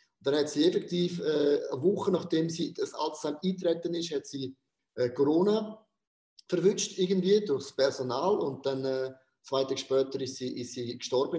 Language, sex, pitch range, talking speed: German, male, 135-180 Hz, 170 wpm